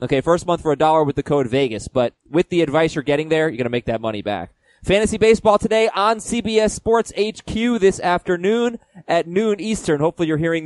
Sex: male